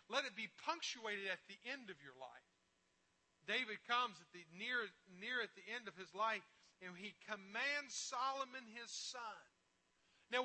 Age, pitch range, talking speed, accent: 40-59, 215-295 Hz, 165 wpm, American